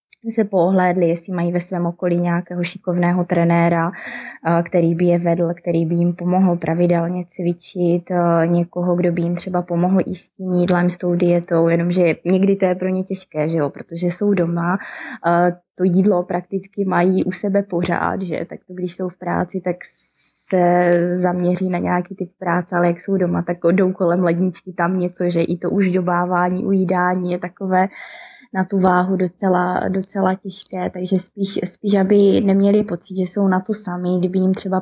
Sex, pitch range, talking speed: female, 175-185 Hz, 175 wpm